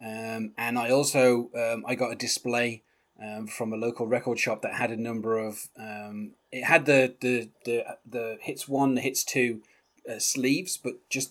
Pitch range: 120-145 Hz